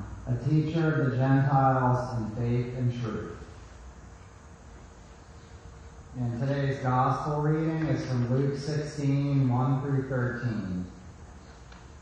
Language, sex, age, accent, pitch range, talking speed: English, male, 30-49, American, 115-145 Hz, 85 wpm